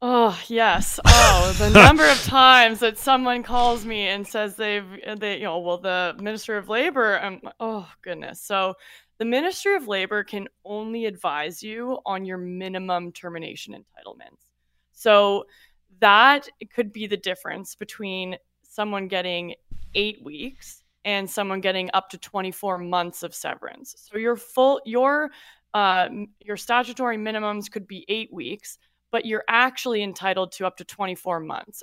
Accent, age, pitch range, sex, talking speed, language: American, 20-39, 185-225 Hz, female, 155 wpm, English